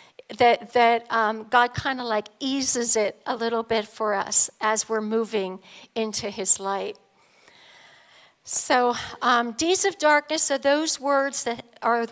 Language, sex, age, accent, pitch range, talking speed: English, female, 60-79, American, 230-295 Hz, 150 wpm